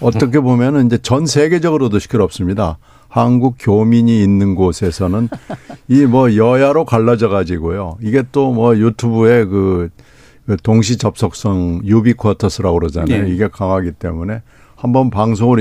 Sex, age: male, 60-79